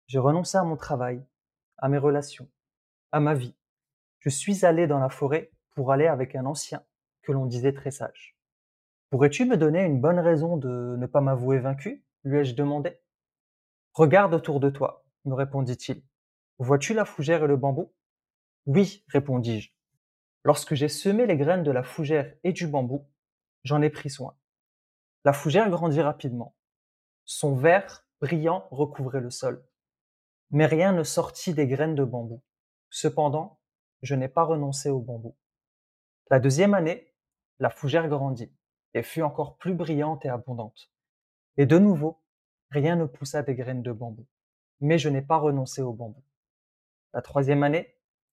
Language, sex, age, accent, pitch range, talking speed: French, male, 20-39, French, 130-155 Hz, 160 wpm